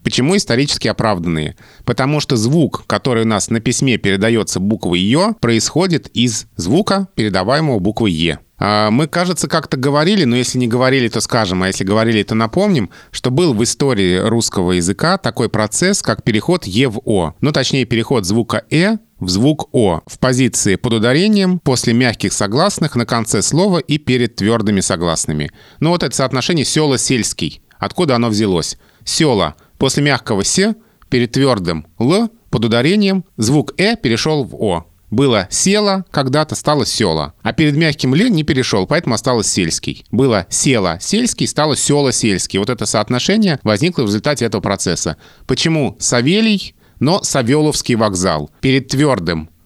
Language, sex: Russian, male